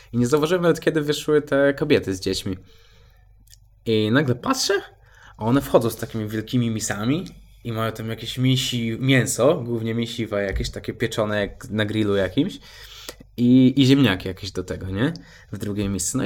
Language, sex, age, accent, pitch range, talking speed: Polish, male, 20-39, native, 100-120 Hz, 170 wpm